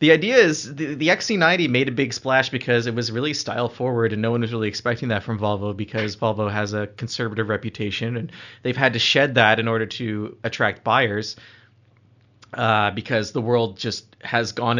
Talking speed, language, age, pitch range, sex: 200 wpm, English, 30-49, 110-130 Hz, male